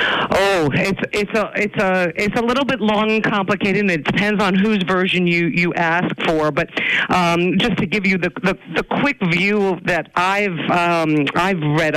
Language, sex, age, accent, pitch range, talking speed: English, female, 50-69, American, 155-195 Hz, 195 wpm